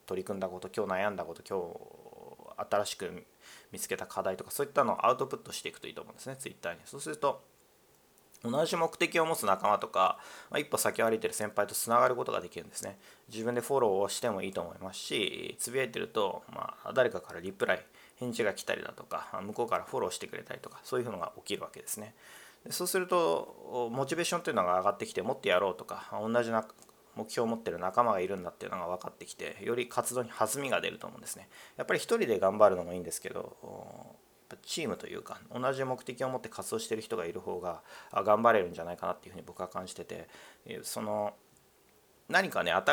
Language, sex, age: Japanese, male, 30-49